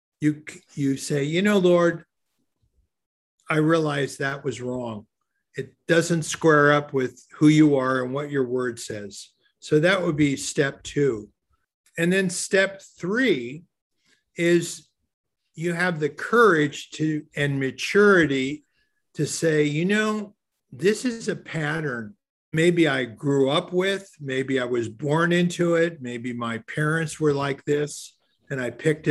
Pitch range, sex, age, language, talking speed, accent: 135-170 Hz, male, 50-69, English, 145 wpm, American